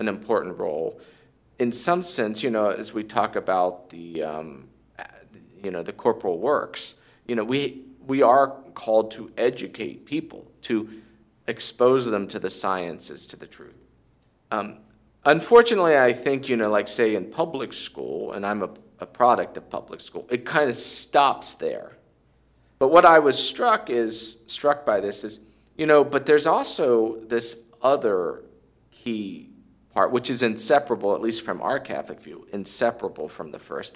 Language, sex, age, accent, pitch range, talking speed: English, male, 40-59, American, 100-125 Hz, 165 wpm